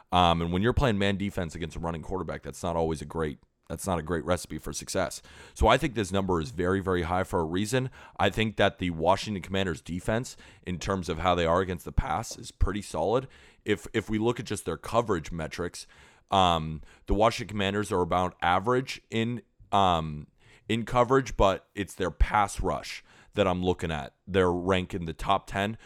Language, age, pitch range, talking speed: English, 30-49, 85-105 Hz, 205 wpm